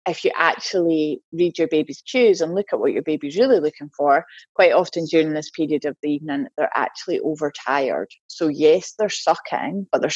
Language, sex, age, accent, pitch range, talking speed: English, female, 20-39, British, 150-220 Hz, 195 wpm